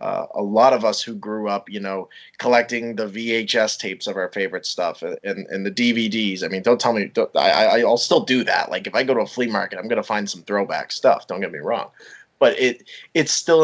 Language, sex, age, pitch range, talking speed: English, male, 20-39, 105-135 Hz, 245 wpm